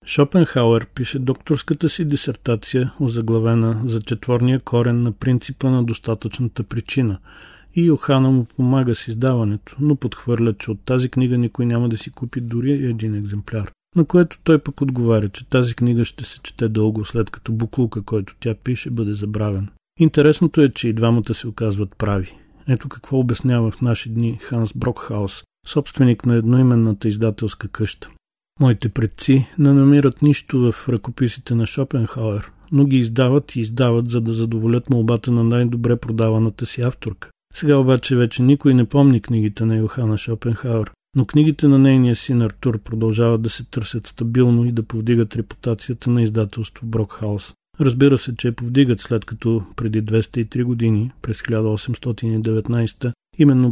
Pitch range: 110-130 Hz